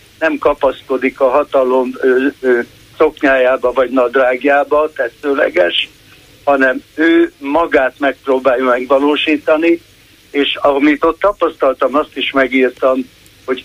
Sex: male